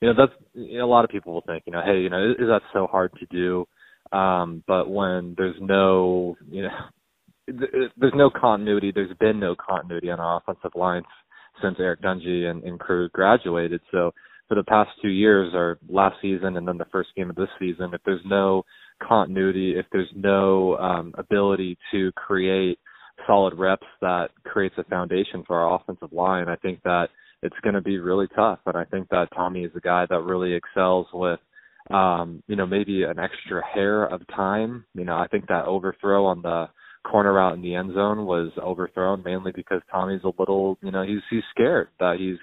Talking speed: 205 wpm